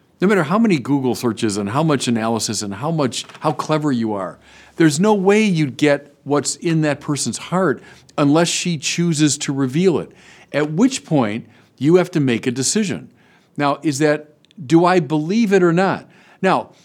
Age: 50-69